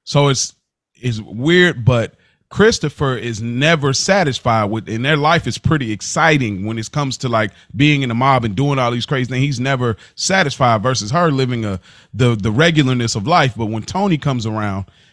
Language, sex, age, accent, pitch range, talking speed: English, male, 30-49, American, 110-150 Hz, 190 wpm